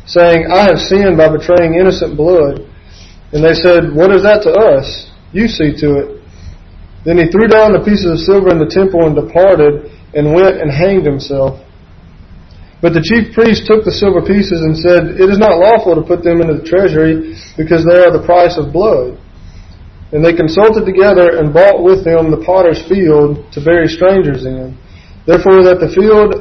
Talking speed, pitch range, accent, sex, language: 190 wpm, 145-185 Hz, American, male, English